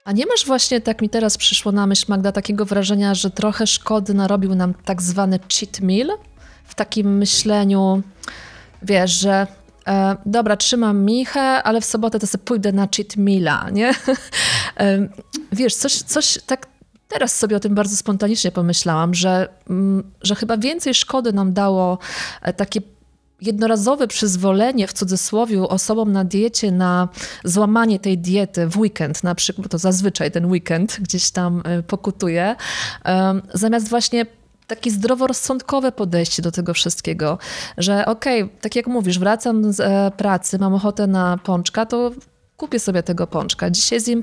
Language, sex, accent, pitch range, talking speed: Polish, female, native, 185-225 Hz, 155 wpm